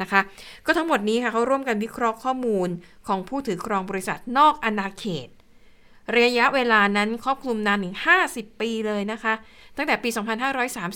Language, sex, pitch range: Thai, female, 195-240 Hz